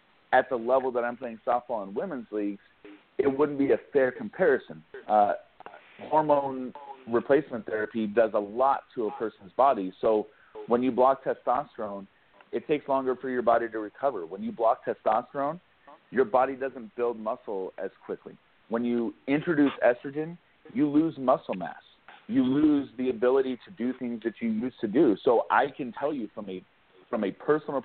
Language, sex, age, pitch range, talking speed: English, male, 40-59, 115-140 Hz, 170 wpm